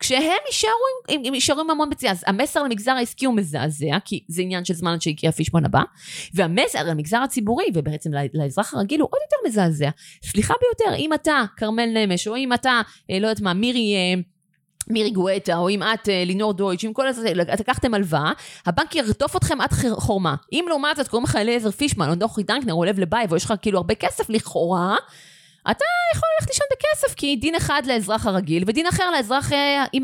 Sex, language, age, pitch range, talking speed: female, Hebrew, 30-49, 160-225 Hz, 180 wpm